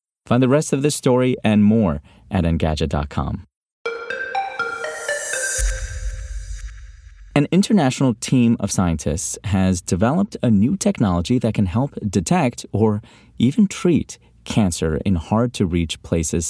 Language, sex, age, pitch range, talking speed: English, male, 30-49, 90-125 Hz, 115 wpm